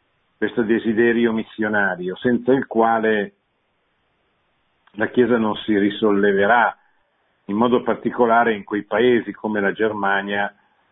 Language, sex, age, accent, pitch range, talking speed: Italian, male, 50-69, native, 100-115 Hz, 110 wpm